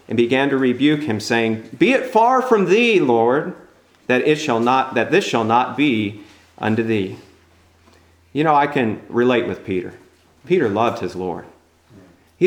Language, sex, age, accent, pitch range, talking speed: English, male, 40-59, American, 105-165 Hz, 170 wpm